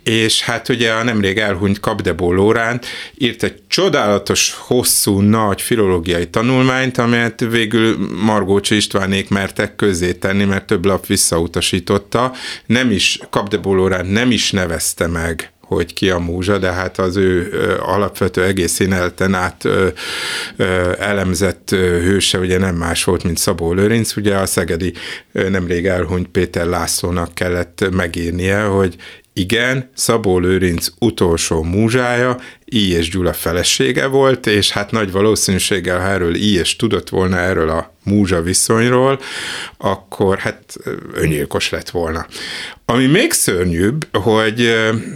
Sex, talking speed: male, 130 wpm